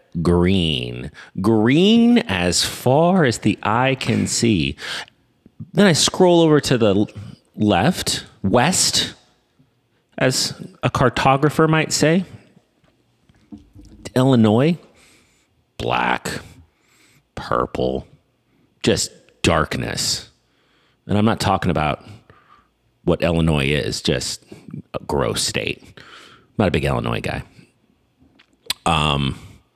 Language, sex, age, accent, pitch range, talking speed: English, male, 30-49, American, 85-130 Hz, 95 wpm